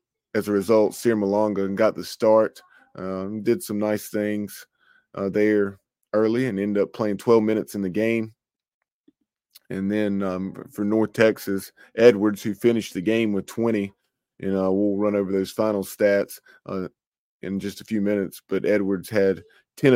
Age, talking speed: 20-39, 160 wpm